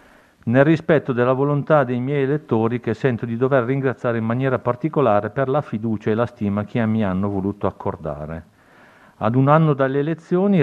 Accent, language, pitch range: native, Italian, 105-135 Hz